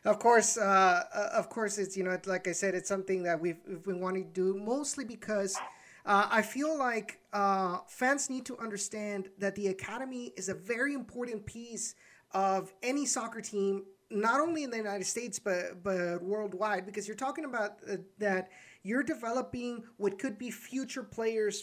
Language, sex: English, male